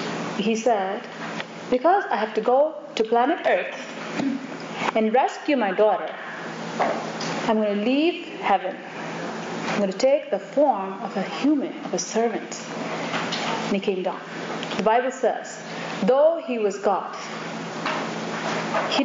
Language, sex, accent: English, female, Indian